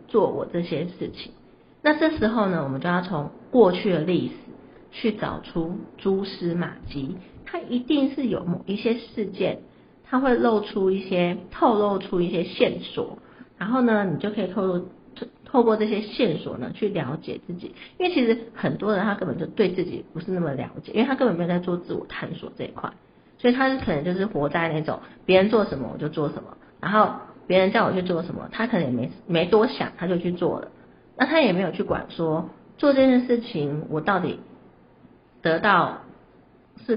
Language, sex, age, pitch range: Chinese, female, 50-69, 170-225 Hz